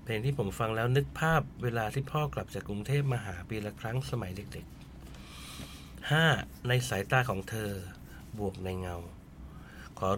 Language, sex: Thai, male